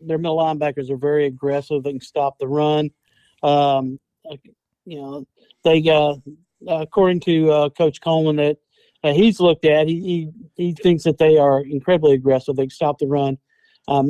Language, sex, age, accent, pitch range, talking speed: English, male, 50-69, American, 150-180 Hz, 170 wpm